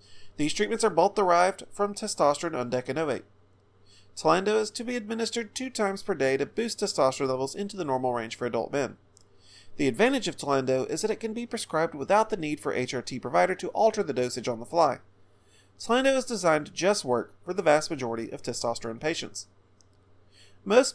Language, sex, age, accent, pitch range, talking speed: English, male, 30-49, American, 115-195 Hz, 185 wpm